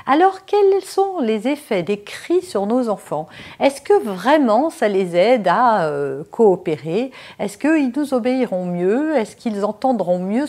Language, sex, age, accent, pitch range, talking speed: French, female, 50-69, French, 195-275 Hz, 160 wpm